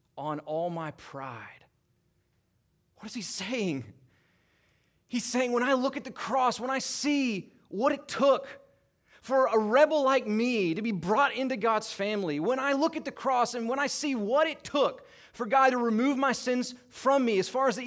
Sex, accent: male, American